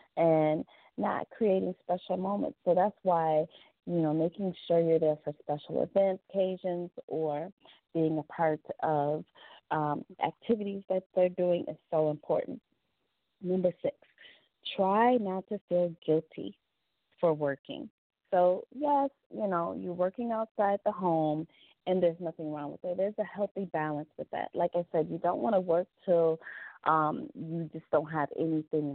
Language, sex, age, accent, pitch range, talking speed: English, female, 30-49, American, 155-190 Hz, 160 wpm